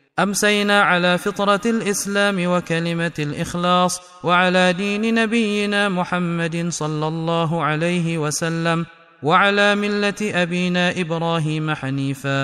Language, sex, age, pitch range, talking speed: Indonesian, male, 30-49, 170-205 Hz, 90 wpm